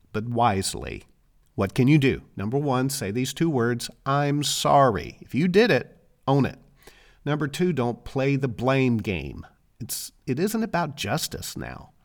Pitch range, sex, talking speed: 95-140 Hz, male, 165 wpm